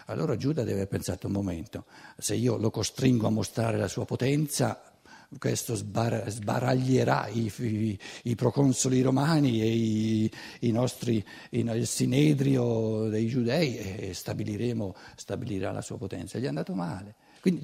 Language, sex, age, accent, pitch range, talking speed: Italian, male, 60-79, native, 110-155 Hz, 145 wpm